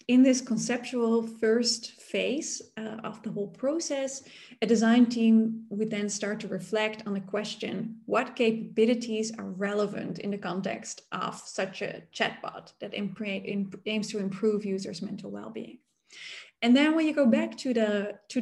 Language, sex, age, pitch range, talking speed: English, female, 20-39, 205-235 Hz, 165 wpm